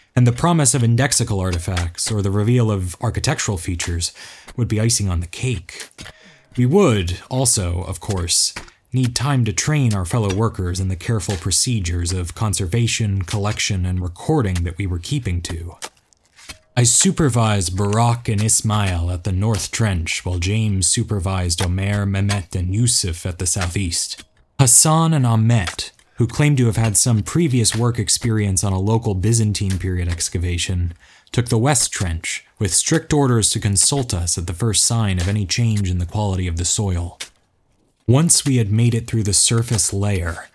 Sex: male